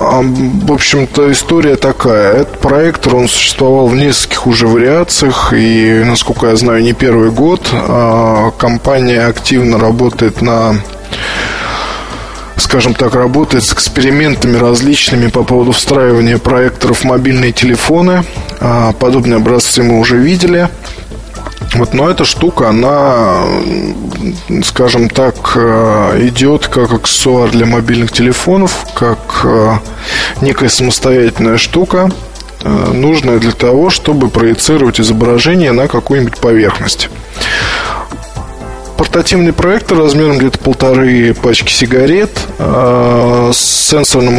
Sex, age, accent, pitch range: male, 20-39, native, 115-140 Hz